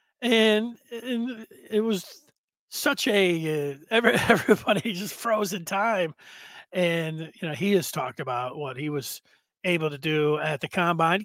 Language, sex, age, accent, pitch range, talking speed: English, male, 40-59, American, 175-220 Hz, 150 wpm